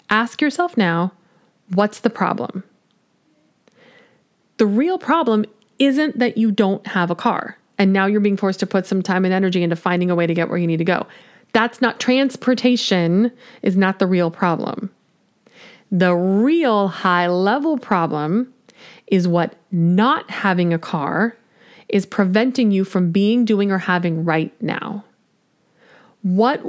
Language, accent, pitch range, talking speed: English, American, 185-230 Hz, 155 wpm